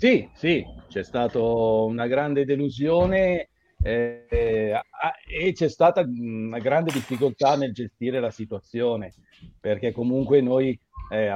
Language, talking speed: Italian, 115 wpm